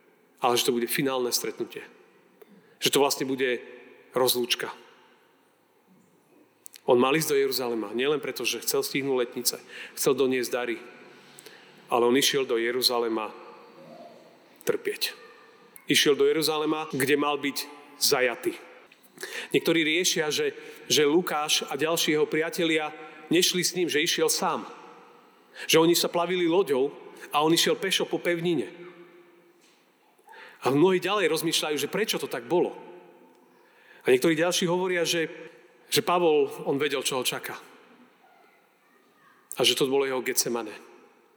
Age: 40-59